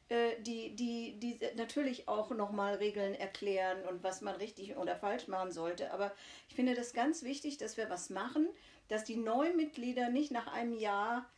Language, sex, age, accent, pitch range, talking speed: German, female, 50-69, German, 210-260 Hz, 180 wpm